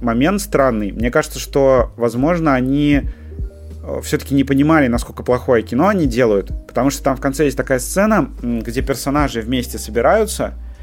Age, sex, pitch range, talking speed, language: 30-49, male, 120-140 Hz, 150 wpm, Russian